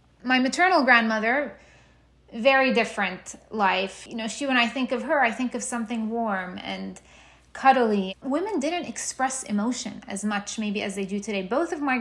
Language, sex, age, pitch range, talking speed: English, female, 30-49, 200-250 Hz, 175 wpm